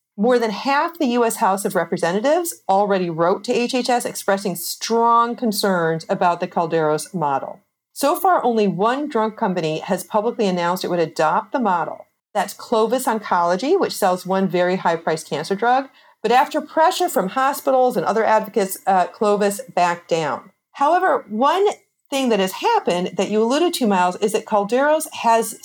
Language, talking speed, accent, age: English, 165 wpm, American, 40-59